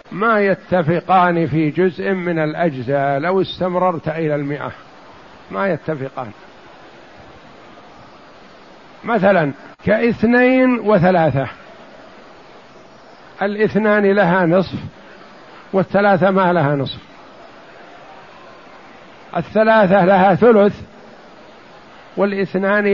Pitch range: 170-220 Hz